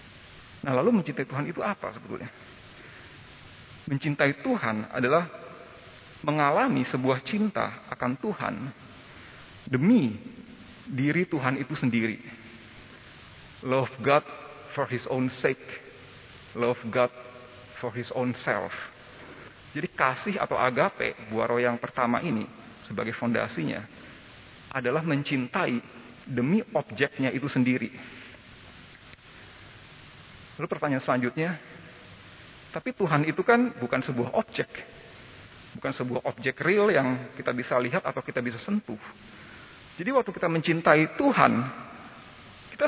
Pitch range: 125-160 Hz